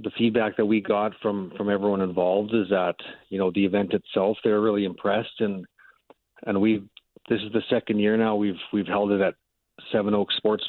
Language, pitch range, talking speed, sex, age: English, 100-115 Hz, 200 wpm, male, 40-59